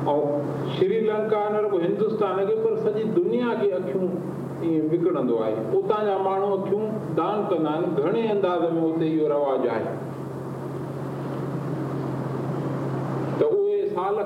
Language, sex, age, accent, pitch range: Hindi, male, 50-69, native, 175-225 Hz